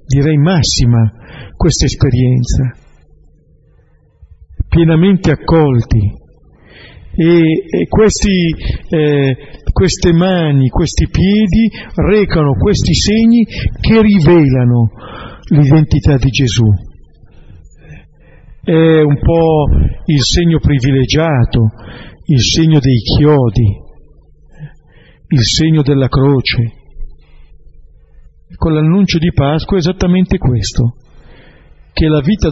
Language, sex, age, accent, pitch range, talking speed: Italian, male, 50-69, native, 120-165 Hz, 85 wpm